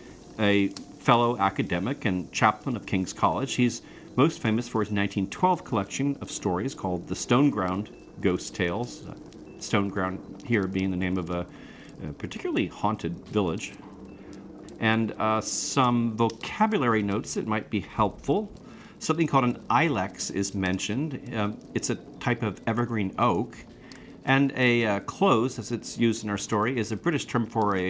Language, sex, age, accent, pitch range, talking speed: English, male, 40-59, American, 100-130 Hz, 155 wpm